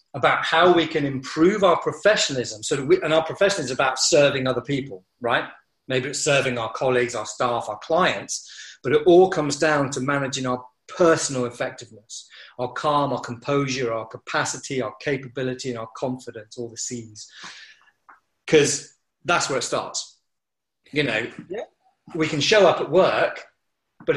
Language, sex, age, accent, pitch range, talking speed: English, male, 40-59, British, 125-150 Hz, 160 wpm